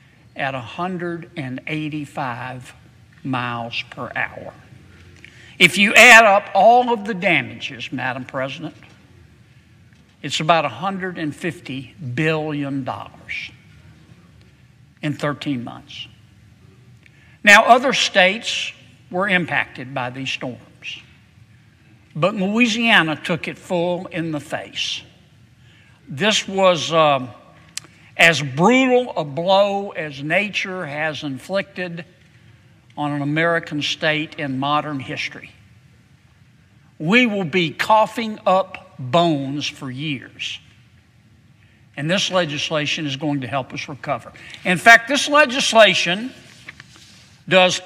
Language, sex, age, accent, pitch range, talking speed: English, male, 60-79, American, 130-185 Hz, 100 wpm